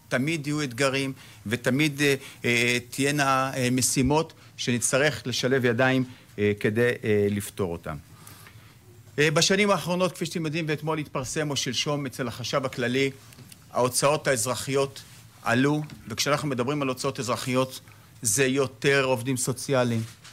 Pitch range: 120-150 Hz